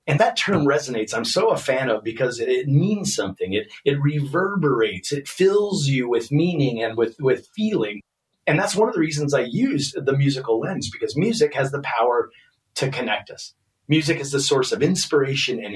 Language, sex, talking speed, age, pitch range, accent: English, male, 195 wpm, 30-49, 135-195 Hz, American